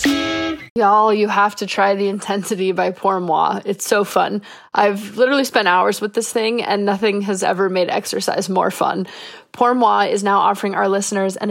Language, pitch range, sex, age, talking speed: English, 200-255 Hz, female, 20-39, 175 wpm